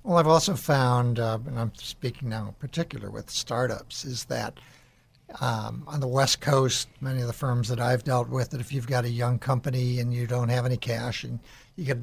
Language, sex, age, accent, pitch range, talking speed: English, male, 60-79, American, 125-140 Hz, 225 wpm